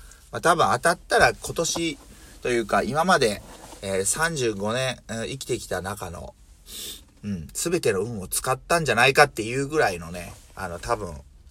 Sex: male